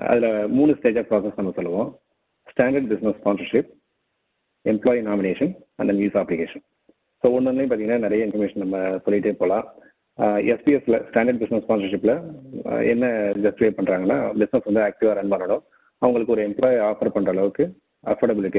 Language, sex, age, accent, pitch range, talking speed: Tamil, male, 30-49, native, 100-115 Hz, 135 wpm